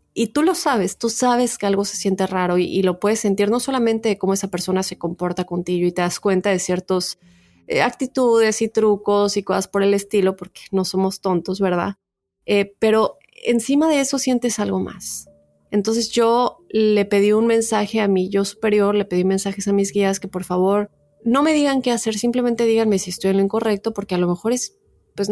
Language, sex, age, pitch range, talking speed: Spanish, female, 20-39, 190-225 Hz, 215 wpm